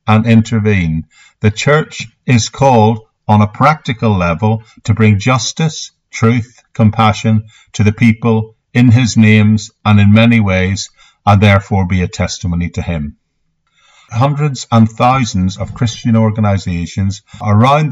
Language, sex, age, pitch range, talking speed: English, male, 50-69, 95-115 Hz, 130 wpm